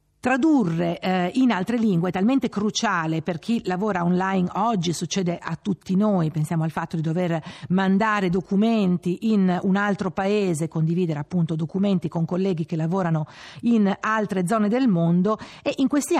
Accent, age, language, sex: native, 50-69, Italian, female